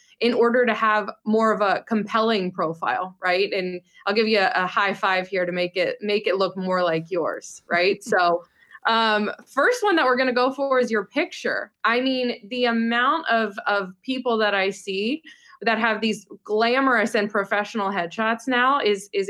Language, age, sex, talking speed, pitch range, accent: English, 20-39, female, 190 wpm, 195-245 Hz, American